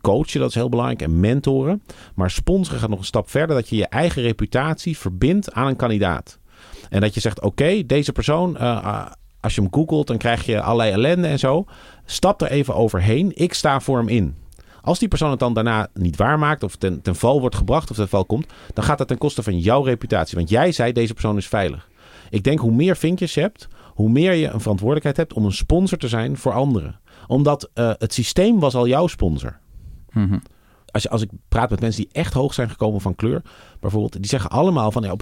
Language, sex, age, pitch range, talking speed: Dutch, male, 40-59, 100-145 Hz, 225 wpm